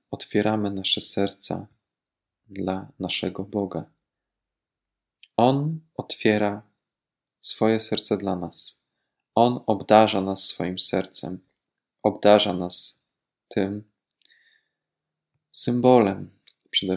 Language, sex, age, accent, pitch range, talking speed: Polish, male, 20-39, native, 95-130 Hz, 80 wpm